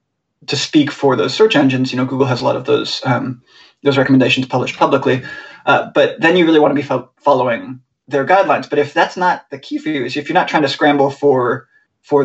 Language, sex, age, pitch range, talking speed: English, male, 30-49, 135-155 Hz, 235 wpm